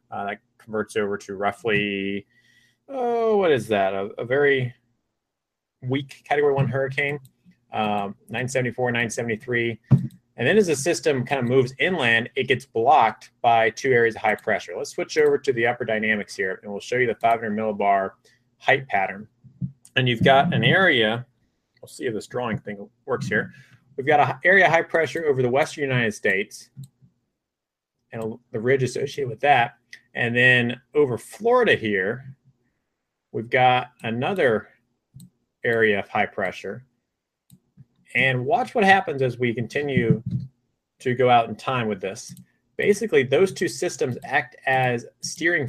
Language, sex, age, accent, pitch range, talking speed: English, male, 30-49, American, 110-140 Hz, 155 wpm